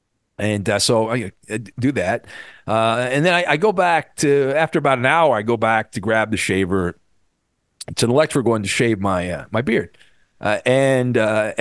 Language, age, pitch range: English, 40-59, 110-145 Hz